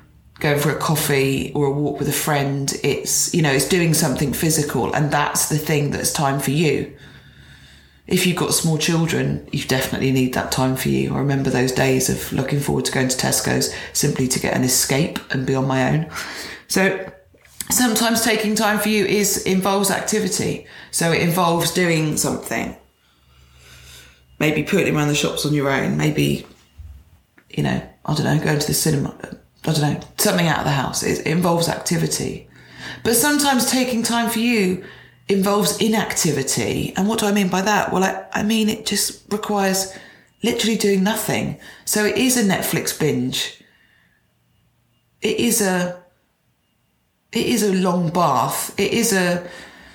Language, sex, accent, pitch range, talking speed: English, female, British, 130-200 Hz, 170 wpm